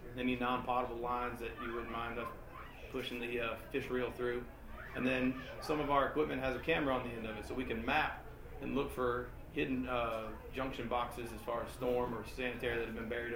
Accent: American